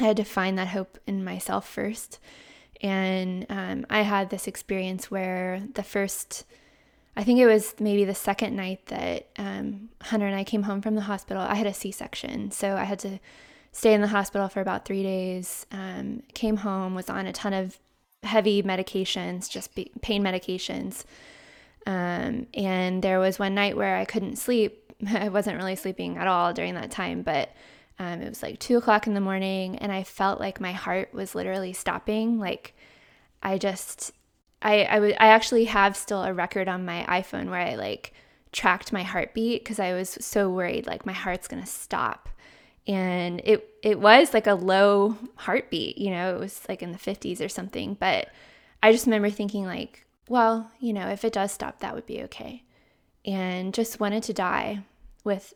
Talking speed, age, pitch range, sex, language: 190 wpm, 20-39, 190-215 Hz, female, English